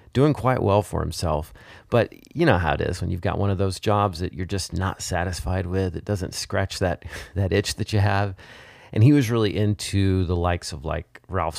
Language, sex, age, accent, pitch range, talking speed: English, male, 40-59, American, 90-110 Hz, 225 wpm